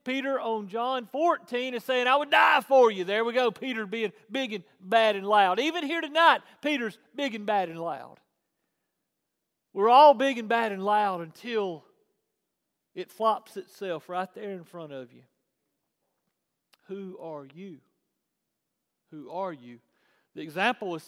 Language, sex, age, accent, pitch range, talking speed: English, male, 40-59, American, 205-270 Hz, 160 wpm